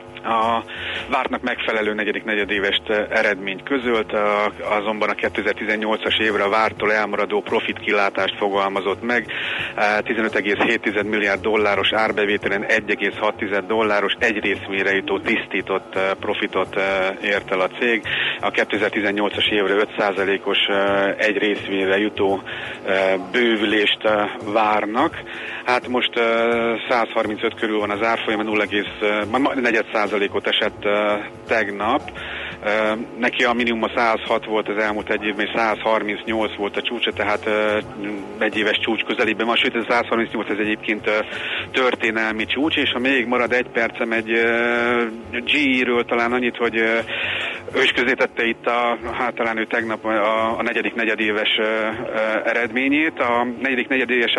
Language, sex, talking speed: Hungarian, male, 120 wpm